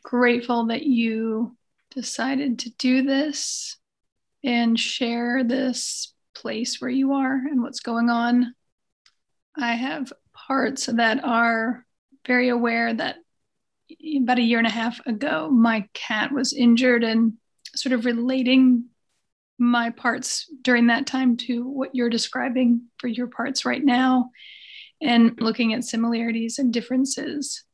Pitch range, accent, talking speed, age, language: 230-265 Hz, American, 130 wpm, 40-59, English